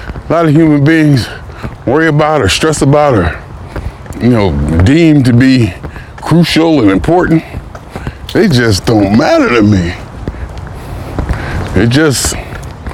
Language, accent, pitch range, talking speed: English, American, 95-130 Hz, 125 wpm